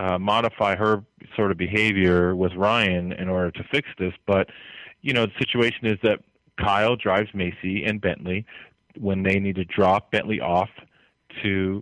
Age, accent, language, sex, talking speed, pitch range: 30-49, American, English, male, 170 wpm, 95-115 Hz